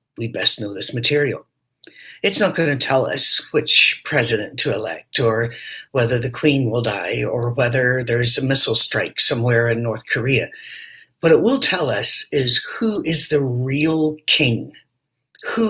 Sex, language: male, English